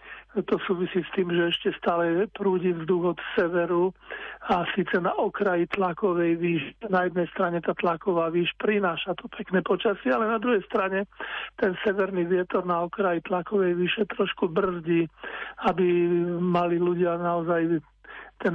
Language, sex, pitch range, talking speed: Slovak, male, 175-200 Hz, 145 wpm